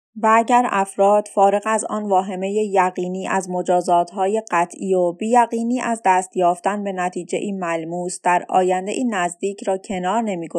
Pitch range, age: 180-220 Hz, 20-39